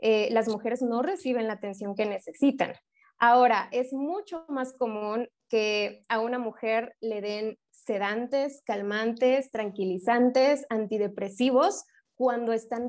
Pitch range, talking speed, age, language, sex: 220-270 Hz, 120 wpm, 20-39, English, female